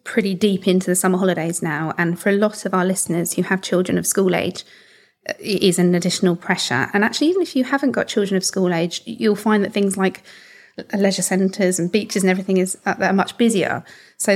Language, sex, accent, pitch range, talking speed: English, female, British, 190-225 Hz, 215 wpm